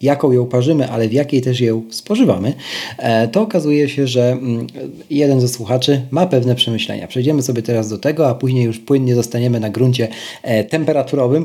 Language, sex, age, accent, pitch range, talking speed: Polish, male, 40-59, native, 115-145 Hz, 170 wpm